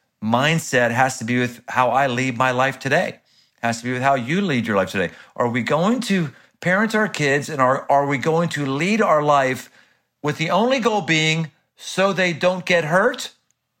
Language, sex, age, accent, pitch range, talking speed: English, male, 50-69, American, 120-160 Hz, 205 wpm